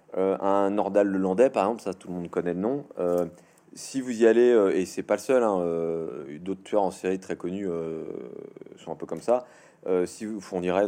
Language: French